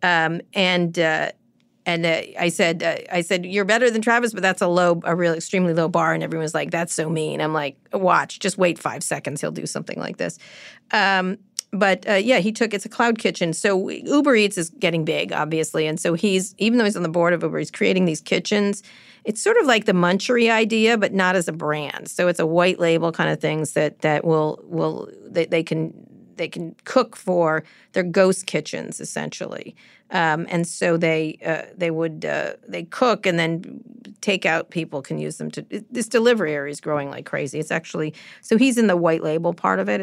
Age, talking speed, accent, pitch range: 40-59, 220 wpm, American, 160-200 Hz